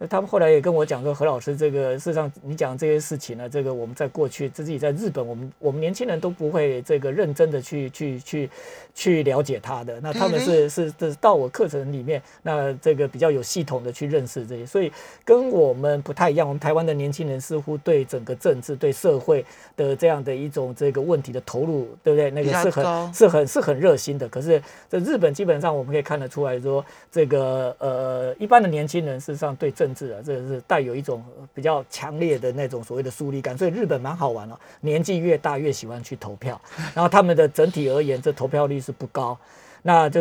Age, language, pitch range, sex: 50-69, Chinese, 135-170 Hz, male